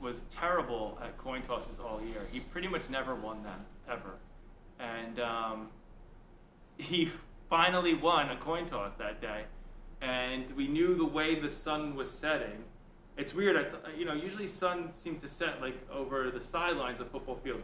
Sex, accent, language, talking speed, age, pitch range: male, American, English, 175 wpm, 20-39, 120-155 Hz